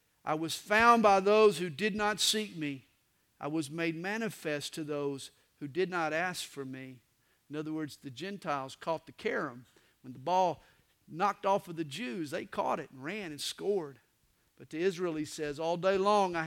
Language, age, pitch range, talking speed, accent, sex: English, 50-69, 135-185 Hz, 195 wpm, American, male